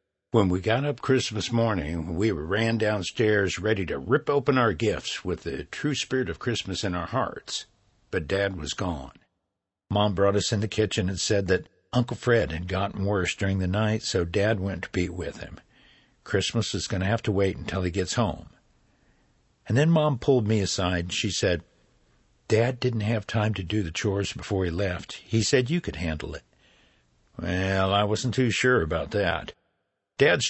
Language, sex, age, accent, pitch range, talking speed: English, male, 60-79, American, 95-115 Hz, 190 wpm